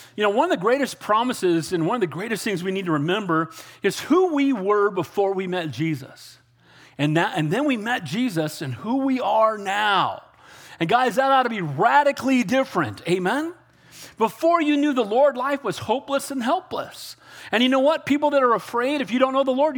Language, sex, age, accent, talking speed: English, male, 40-59, American, 210 wpm